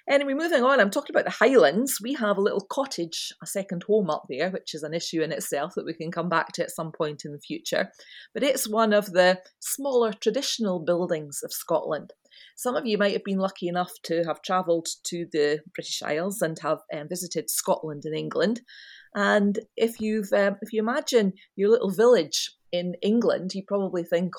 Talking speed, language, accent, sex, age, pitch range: 200 wpm, English, British, female, 30-49, 170-225 Hz